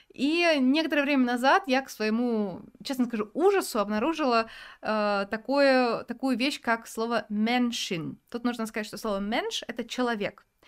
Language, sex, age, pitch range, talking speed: Russian, female, 20-39, 210-255 Hz, 145 wpm